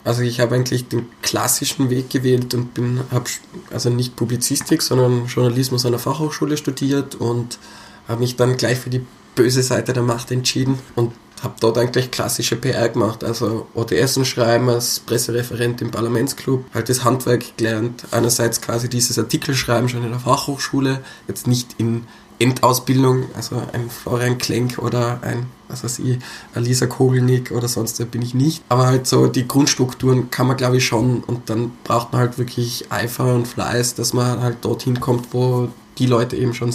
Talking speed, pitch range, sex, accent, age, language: 170 wpm, 120-125 Hz, male, German, 20-39, German